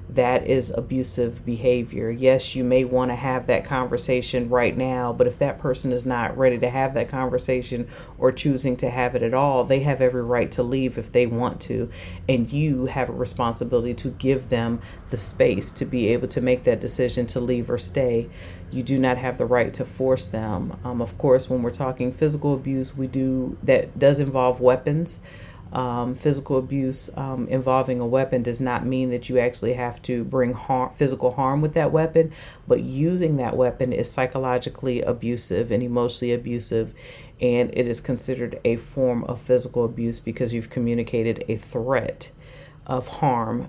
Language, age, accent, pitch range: English, 40-59, American, 120-135 Hz